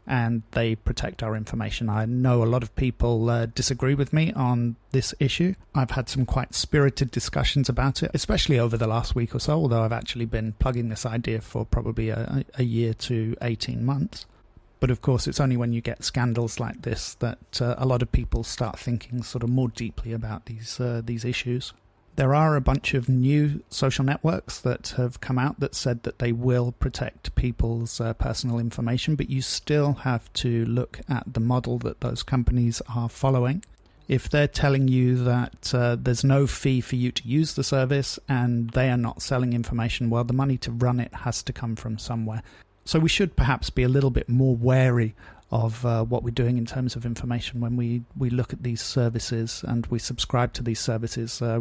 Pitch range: 115-130 Hz